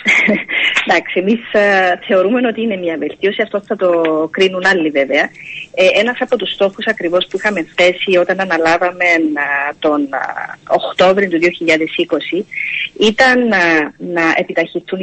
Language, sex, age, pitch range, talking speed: Greek, female, 30-49, 170-225 Hz, 120 wpm